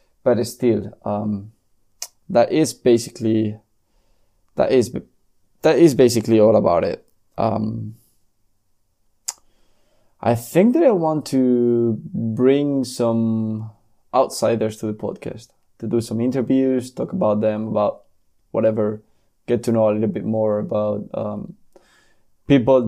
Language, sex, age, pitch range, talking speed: English, male, 20-39, 105-125 Hz, 120 wpm